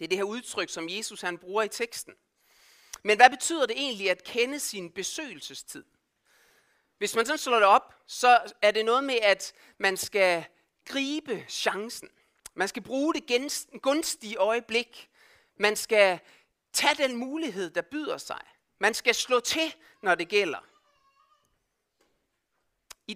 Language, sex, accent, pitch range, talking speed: Danish, male, native, 195-275 Hz, 150 wpm